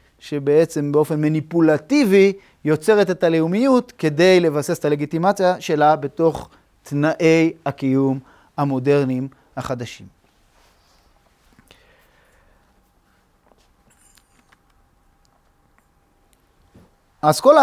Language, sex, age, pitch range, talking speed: Hebrew, male, 40-59, 130-175 Hz, 60 wpm